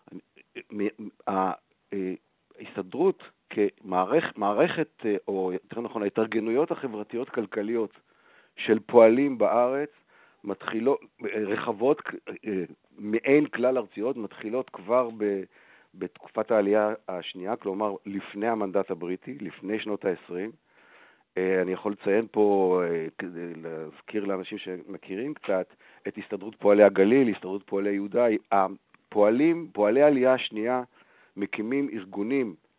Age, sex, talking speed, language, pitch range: 50-69, male, 90 wpm, Hebrew, 95-115 Hz